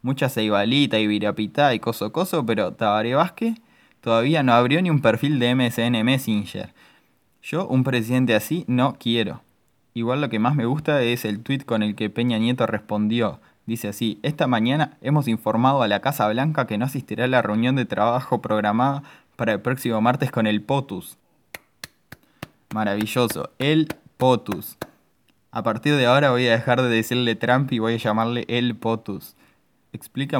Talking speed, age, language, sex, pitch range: 170 wpm, 20-39, Spanish, male, 110-125 Hz